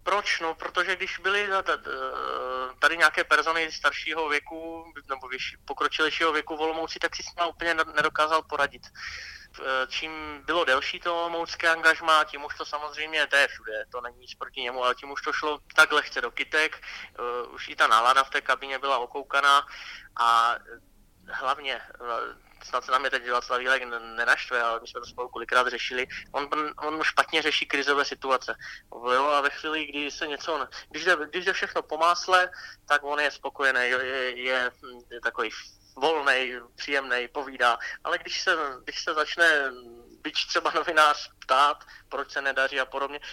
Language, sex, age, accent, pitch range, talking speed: Czech, male, 20-39, native, 130-160 Hz, 165 wpm